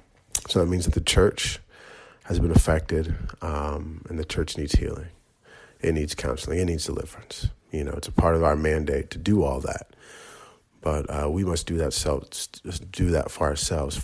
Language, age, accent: English, 40-59, American